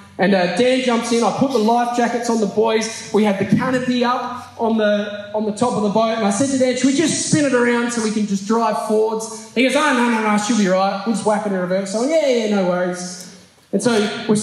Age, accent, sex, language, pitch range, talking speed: 20-39, Australian, male, English, 210-265 Hz, 285 wpm